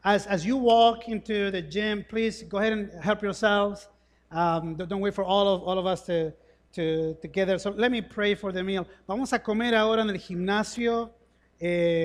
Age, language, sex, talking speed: 30-49, English, male, 200 wpm